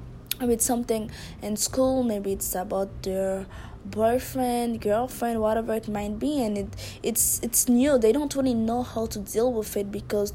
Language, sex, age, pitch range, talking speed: English, female, 20-39, 195-230 Hz, 175 wpm